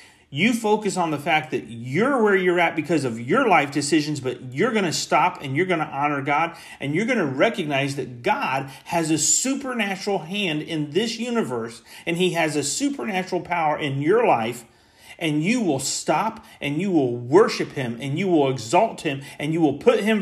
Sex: male